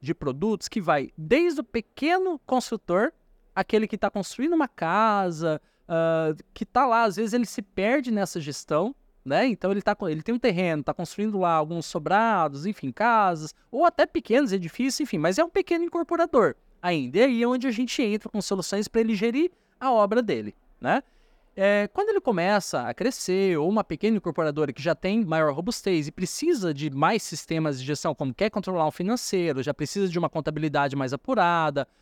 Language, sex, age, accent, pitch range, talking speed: Portuguese, male, 20-39, Brazilian, 160-220 Hz, 185 wpm